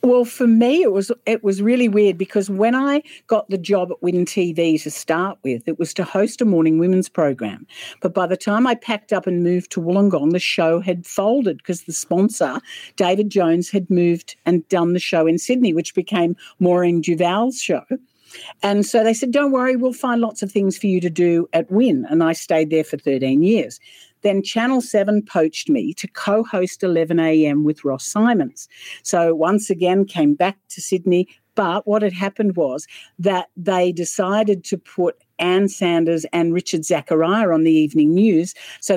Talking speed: 190 wpm